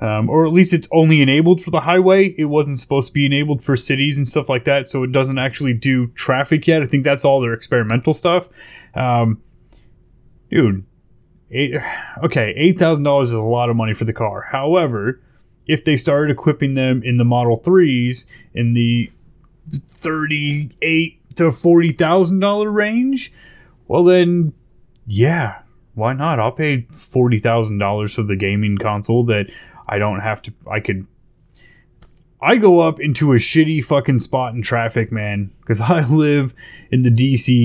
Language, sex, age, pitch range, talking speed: English, male, 30-49, 115-155 Hz, 160 wpm